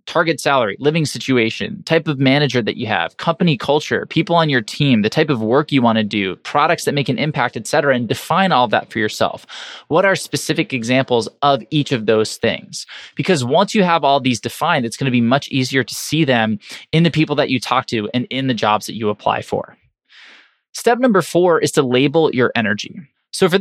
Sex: male